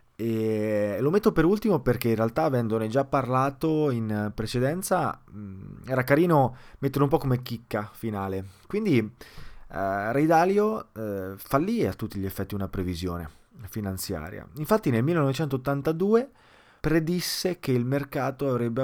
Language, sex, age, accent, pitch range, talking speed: Italian, male, 20-39, native, 100-140 Hz, 125 wpm